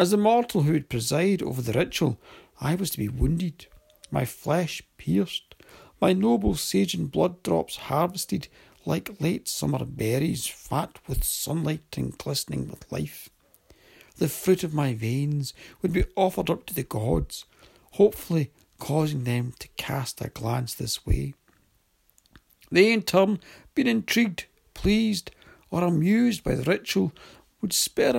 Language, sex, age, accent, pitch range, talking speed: English, male, 60-79, British, 125-190 Hz, 145 wpm